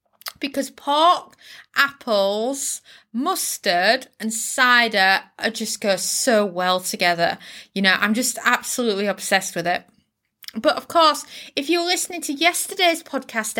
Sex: female